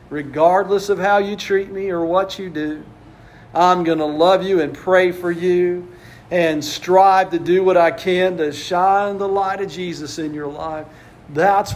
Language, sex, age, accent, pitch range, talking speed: English, male, 50-69, American, 165-195 Hz, 185 wpm